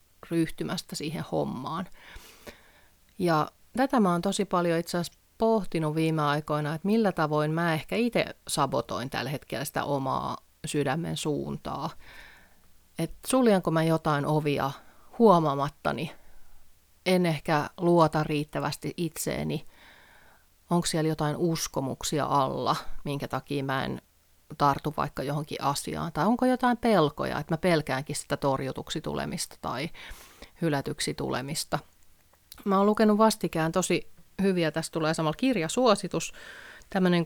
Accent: native